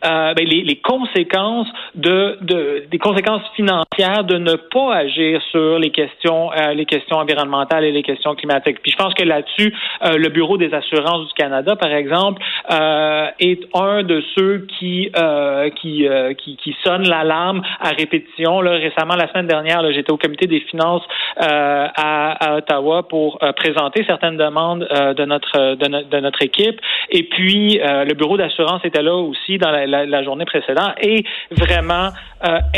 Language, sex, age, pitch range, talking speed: French, male, 40-59, 150-190 Hz, 185 wpm